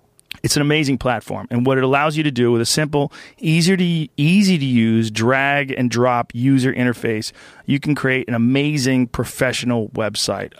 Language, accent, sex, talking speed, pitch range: English, American, male, 140 wpm, 120-145 Hz